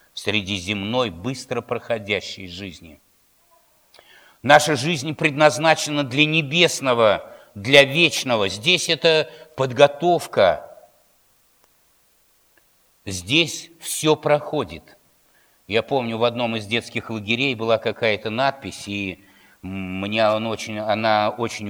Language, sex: Russian, male